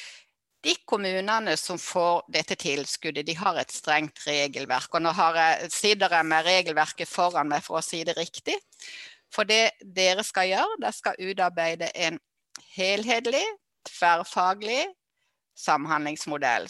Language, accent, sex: English, Swedish, female